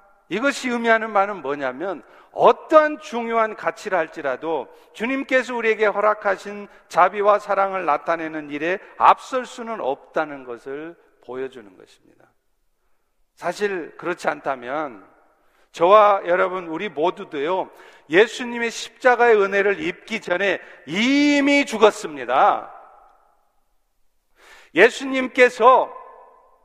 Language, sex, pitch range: Korean, male, 200-255 Hz